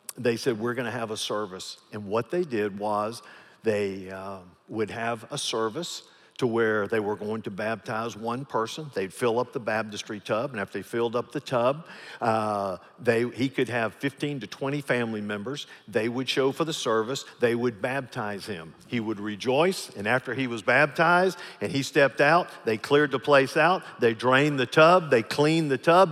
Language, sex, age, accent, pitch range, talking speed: English, male, 50-69, American, 110-155 Hz, 200 wpm